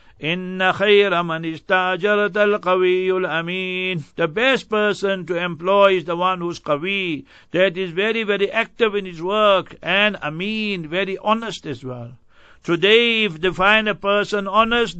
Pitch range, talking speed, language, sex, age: 175-205 Hz, 140 wpm, English, male, 60-79